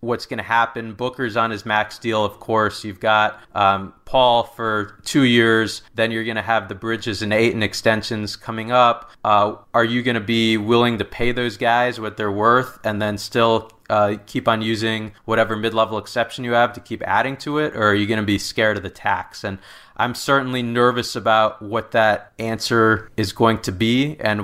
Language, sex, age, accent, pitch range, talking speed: English, male, 30-49, American, 105-115 Hz, 205 wpm